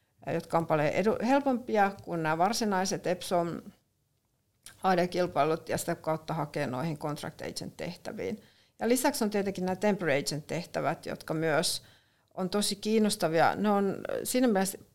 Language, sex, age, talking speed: Finnish, female, 60-79, 125 wpm